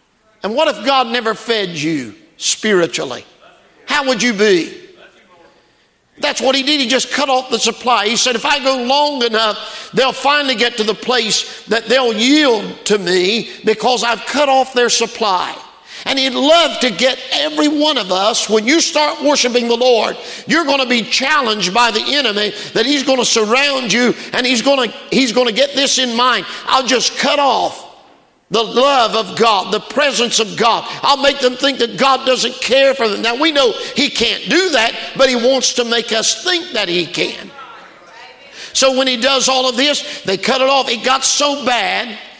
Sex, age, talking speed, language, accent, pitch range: male, 50-69, 190 wpm, English, American, 230-275 Hz